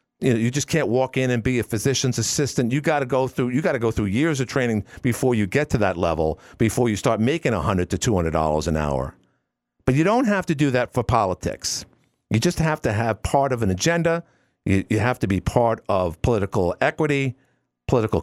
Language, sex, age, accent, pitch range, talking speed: English, male, 50-69, American, 110-145 Hz, 220 wpm